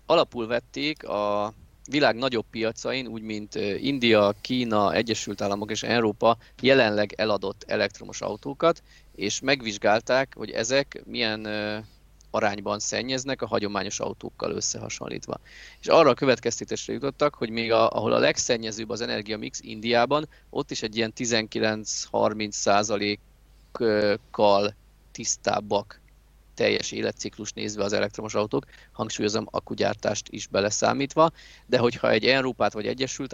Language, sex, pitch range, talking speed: Hungarian, male, 105-125 Hz, 115 wpm